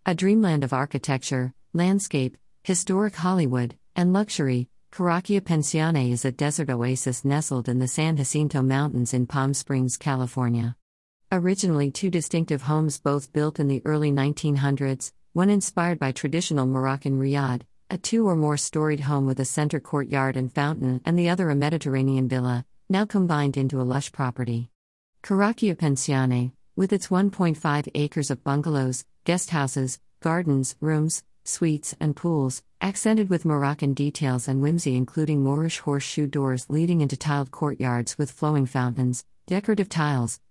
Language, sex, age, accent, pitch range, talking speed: English, female, 50-69, American, 130-165 Hz, 140 wpm